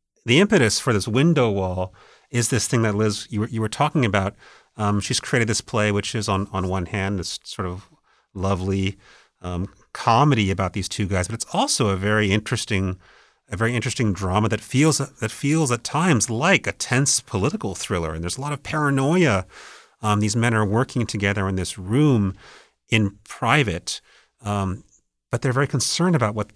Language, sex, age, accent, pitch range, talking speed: English, male, 40-59, American, 100-130 Hz, 190 wpm